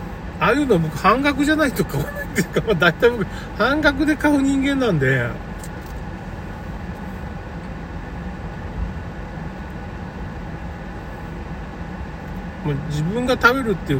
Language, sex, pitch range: Japanese, male, 130-215 Hz